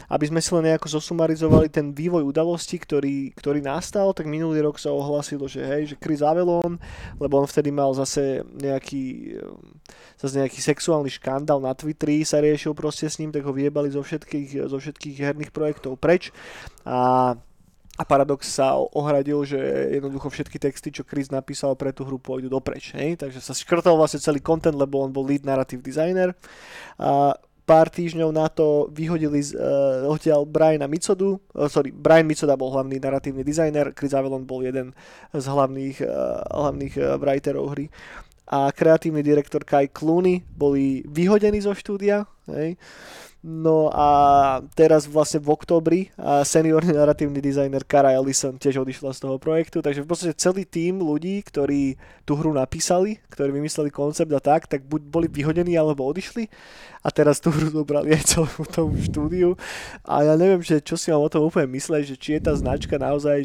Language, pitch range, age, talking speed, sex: Slovak, 140-160 Hz, 20-39, 165 wpm, male